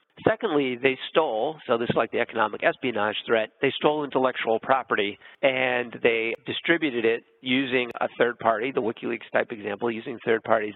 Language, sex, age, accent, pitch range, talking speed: English, male, 50-69, American, 115-145 Hz, 165 wpm